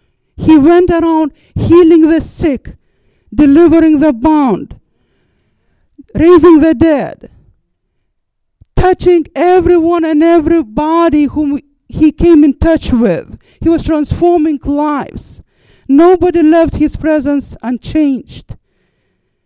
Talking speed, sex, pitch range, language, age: 95 wpm, female, 245-310 Hz, English, 50-69